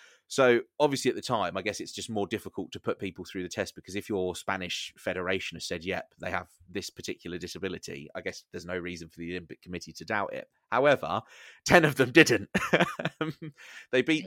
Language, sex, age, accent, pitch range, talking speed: English, male, 30-49, British, 95-115 Hz, 205 wpm